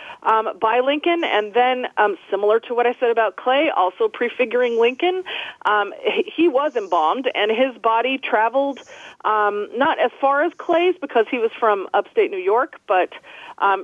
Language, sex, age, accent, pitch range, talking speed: English, female, 30-49, American, 200-275 Hz, 175 wpm